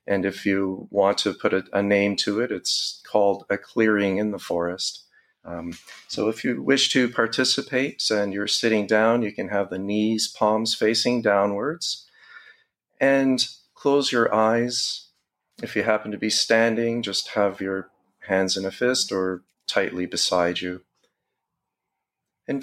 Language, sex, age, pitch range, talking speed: English, male, 40-59, 100-115 Hz, 155 wpm